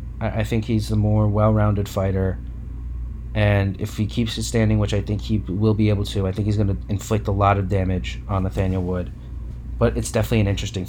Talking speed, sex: 215 wpm, male